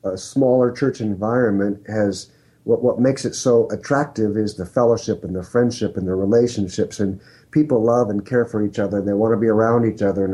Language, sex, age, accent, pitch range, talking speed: English, male, 50-69, American, 105-130 Hz, 215 wpm